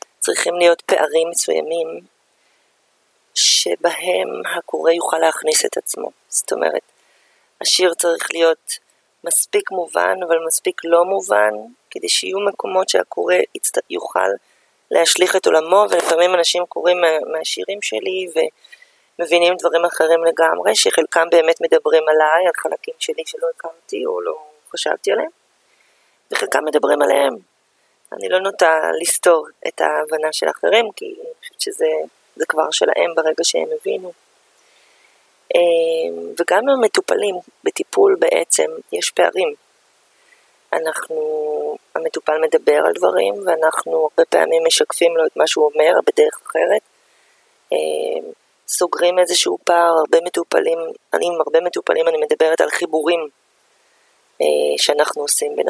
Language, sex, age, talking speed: Hebrew, female, 30-49, 115 wpm